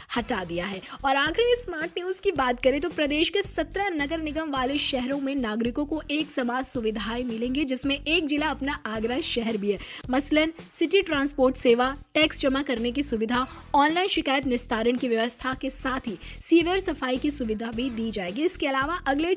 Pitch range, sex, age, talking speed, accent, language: 240-315 Hz, female, 20-39, 185 wpm, native, Hindi